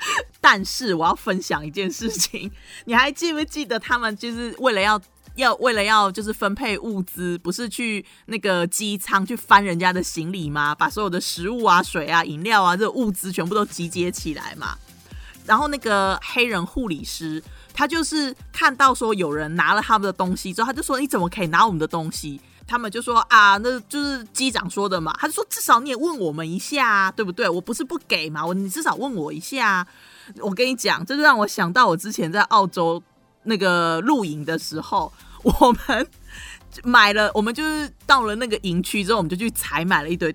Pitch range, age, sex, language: 175-245 Hz, 30-49, female, Chinese